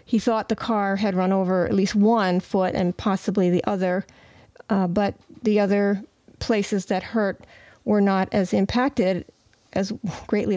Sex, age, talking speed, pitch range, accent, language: female, 40-59, 160 wpm, 185-220 Hz, American, English